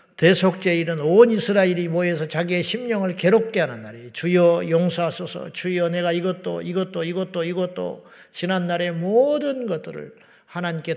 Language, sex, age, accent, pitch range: Korean, male, 50-69, Japanese, 160-190 Hz